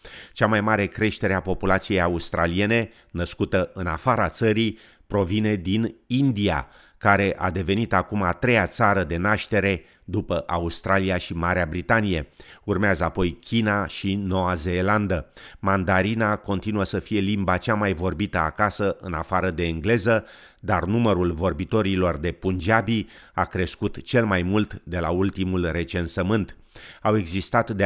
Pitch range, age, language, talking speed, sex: 90-105 Hz, 30-49, Romanian, 140 wpm, male